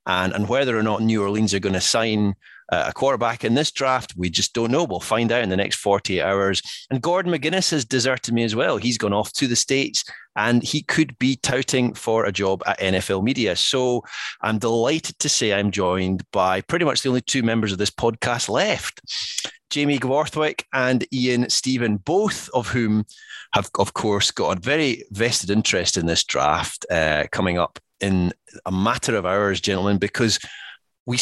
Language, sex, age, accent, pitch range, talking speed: English, male, 30-49, British, 100-130 Hz, 195 wpm